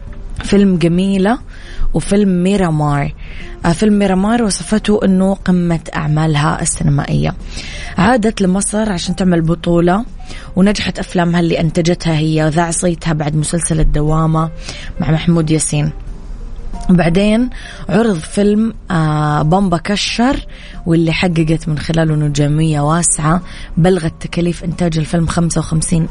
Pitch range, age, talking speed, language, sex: 160-180 Hz, 20-39, 105 wpm, Arabic, female